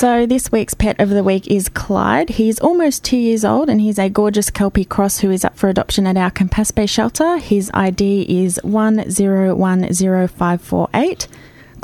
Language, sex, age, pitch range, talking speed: English, female, 20-39, 190-220 Hz, 170 wpm